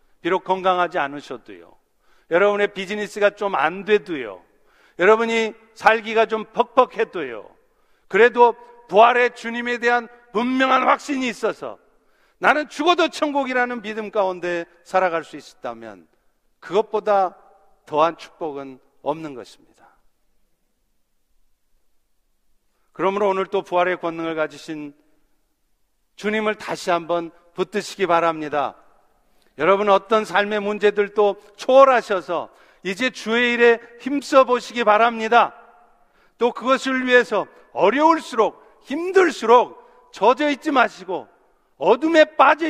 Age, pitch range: 50-69, 180-250 Hz